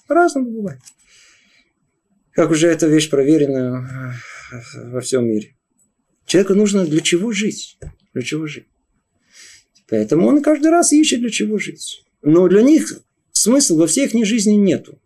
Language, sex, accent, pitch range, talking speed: Russian, male, native, 145-225 Hz, 140 wpm